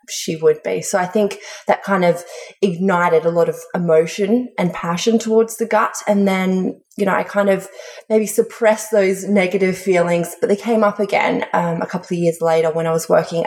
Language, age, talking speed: English, 20-39, 205 wpm